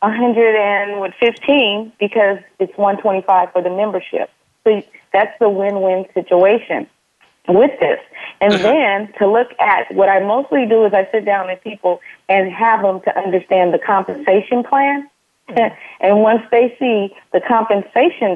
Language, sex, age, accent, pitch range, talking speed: English, female, 30-49, American, 195-230 Hz, 140 wpm